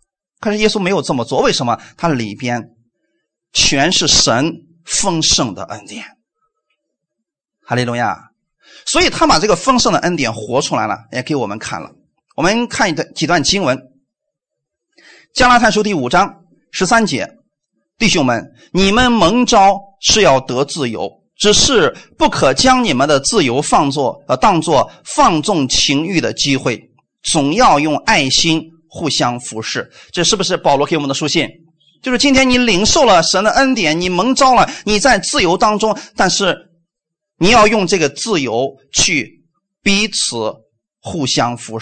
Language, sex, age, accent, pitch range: Chinese, male, 30-49, native, 150-220 Hz